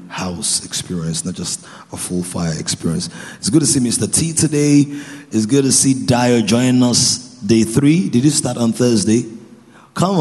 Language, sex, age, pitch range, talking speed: English, male, 30-49, 95-140 Hz, 175 wpm